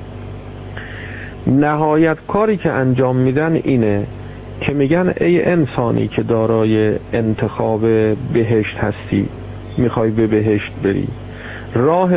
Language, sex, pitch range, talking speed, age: Persian, male, 105-130 Hz, 100 wpm, 50-69